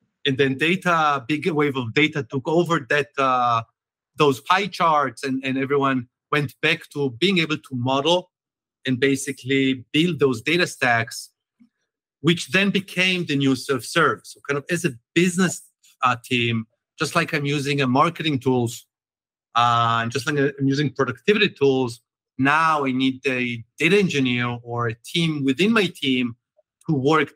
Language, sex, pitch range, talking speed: English, male, 130-170 Hz, 160 wpm